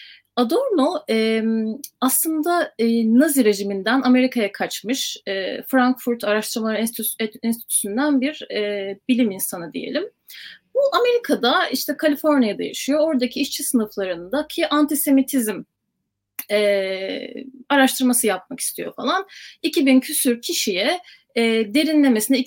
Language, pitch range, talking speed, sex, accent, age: Turkish, 225-290 Hz, 85 wpm, female, native, 30-49